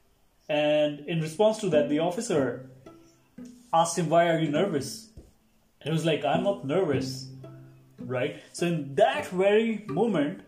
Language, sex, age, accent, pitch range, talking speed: English, male, 20-39, Indian, 135-170 Hz, 145 wpm